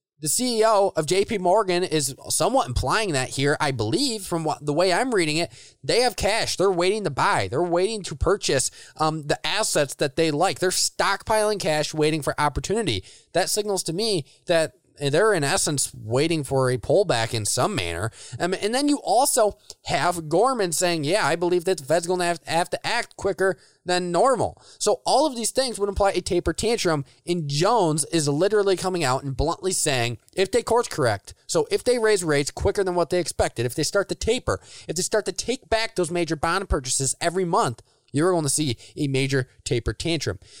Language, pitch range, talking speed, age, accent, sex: English, 145-195 Hz, 200 wpm, 20-39, American, male